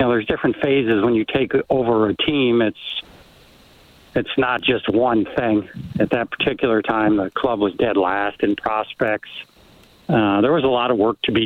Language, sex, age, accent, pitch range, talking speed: English, male, 60-79, American, 110-135 Hz, 195 wpm